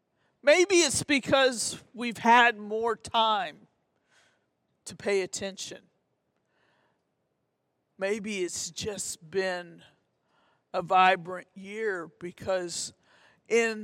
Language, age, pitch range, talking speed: English, 50-69, 180-210 Hz, 80 wpm